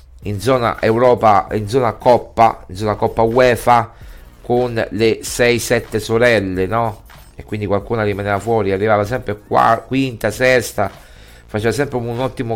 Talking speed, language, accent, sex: 140 wpm, Italian, native, male